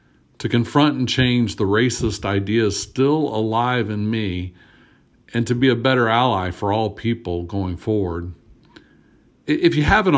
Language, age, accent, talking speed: English, 50-69, American, 145 wpm